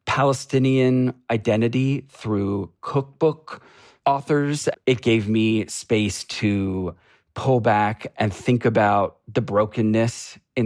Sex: male